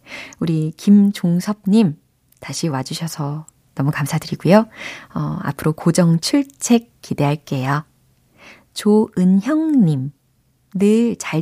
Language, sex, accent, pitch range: Korean, female, native, 155-230 Hz